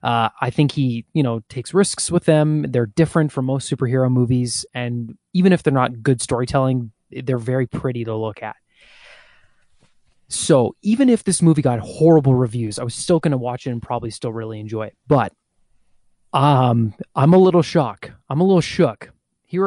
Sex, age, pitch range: male, 20-39, 120-155 Hz